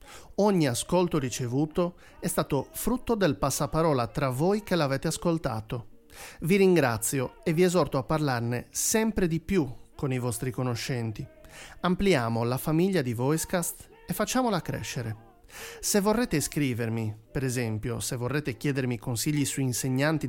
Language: Italian